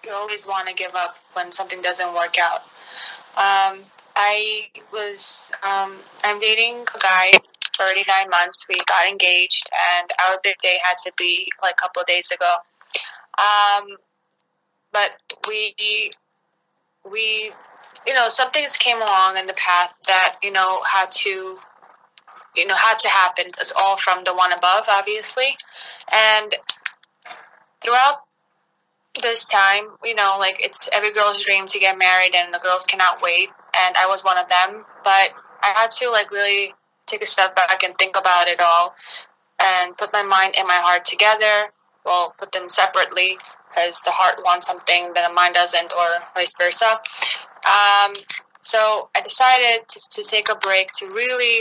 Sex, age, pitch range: female, 20-39, 180-215 Hz